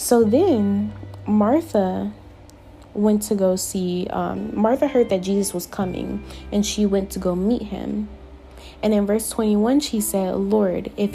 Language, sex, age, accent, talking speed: English, female, 20-39, American, 155 wpm